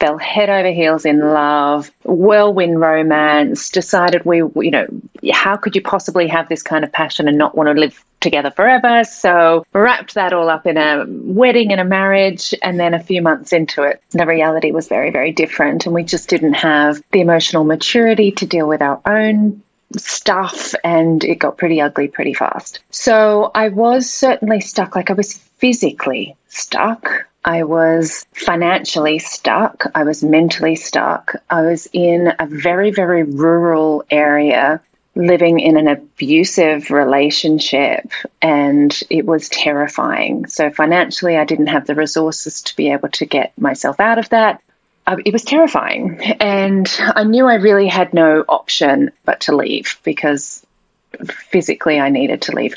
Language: English